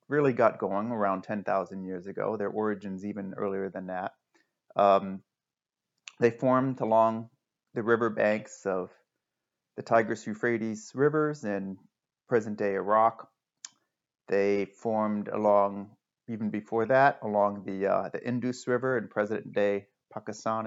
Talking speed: 125 wpm